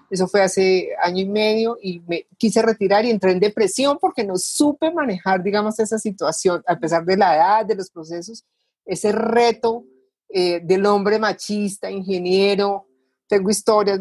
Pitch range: 180-225 Hz